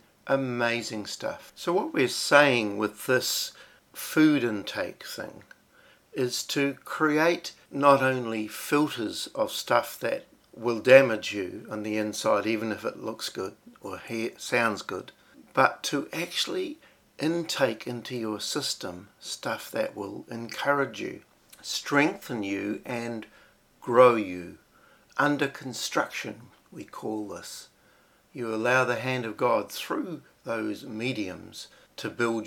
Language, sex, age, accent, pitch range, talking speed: English, male, 60-79, Australian, 110-130 Hz, 125 wpm